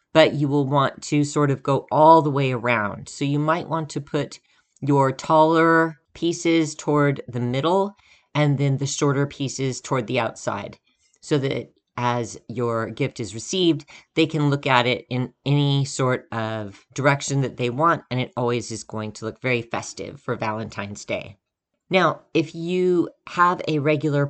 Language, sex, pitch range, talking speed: English, female, 125-155 Hz, 175 wpm